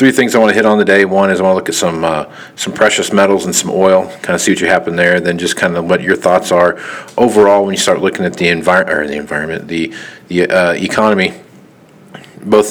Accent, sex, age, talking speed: American, male, 40-59, 255 wpm